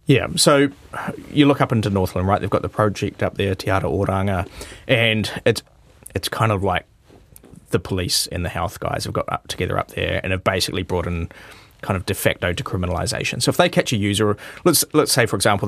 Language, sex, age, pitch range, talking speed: English, male, 20-39, 95-115 Hz, 215 wpm